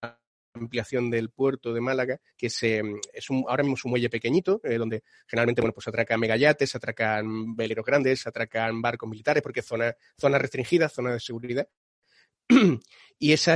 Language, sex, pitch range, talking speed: Spanish, male, 115-135 Hz, 175 wpm